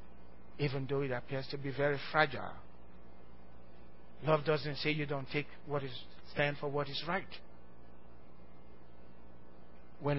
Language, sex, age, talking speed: English, male, 60-79, 130 wpm